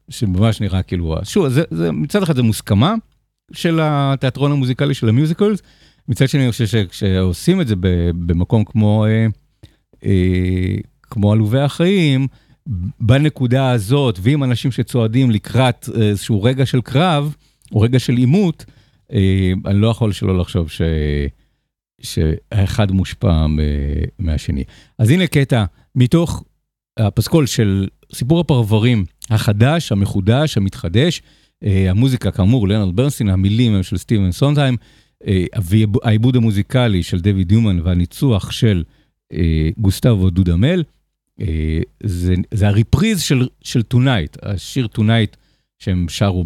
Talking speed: 120 wpm